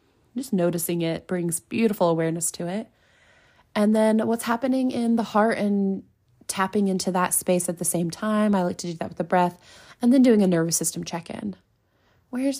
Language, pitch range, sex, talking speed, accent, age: English, 175-220 Hz, female, 190 wpm, American, 20-39